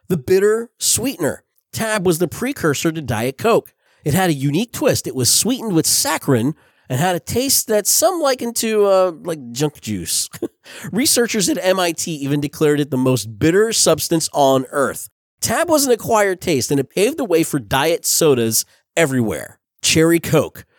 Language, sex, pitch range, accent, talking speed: English, male, 145-195 Hz, American, 175 wpm